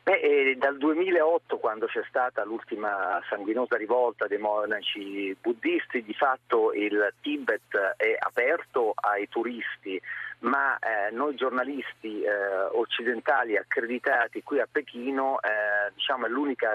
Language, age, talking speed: Italian, 40-59, 110 wpm